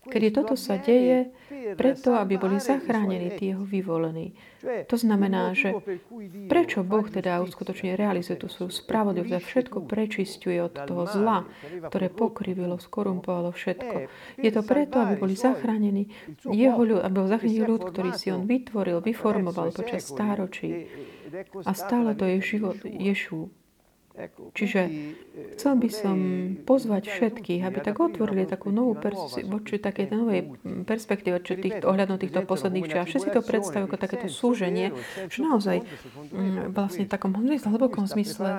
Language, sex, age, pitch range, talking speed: Slovak, female, 40-59, 185-225 Hz, 135 wpm